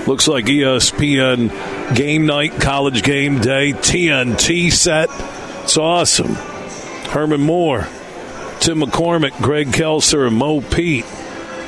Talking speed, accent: 110 wpm, American